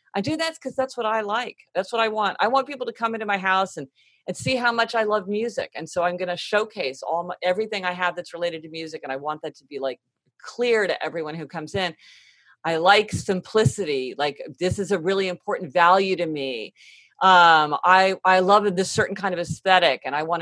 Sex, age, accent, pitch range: female, 40-59, American, 155-205 Hz